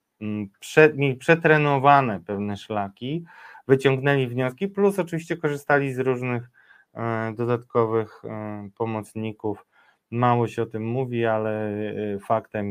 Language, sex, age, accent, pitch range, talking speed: Polish, male, 20-39, native, 105-135 Hz, 90 wpm